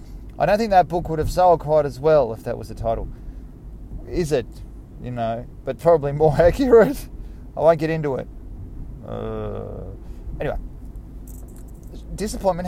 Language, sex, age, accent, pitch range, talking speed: English, male, 30-49, Australian, 115-155 Hz, 150 wpm